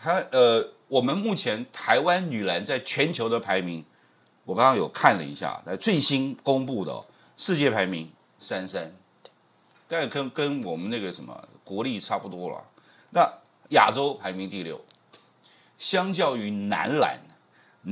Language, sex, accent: Chinese, male, native